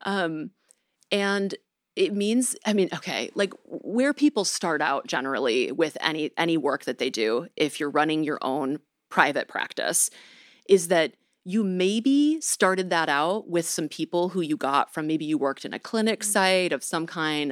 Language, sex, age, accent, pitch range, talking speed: English, female, 30-49, American, 155-215 Hz, 175 wpm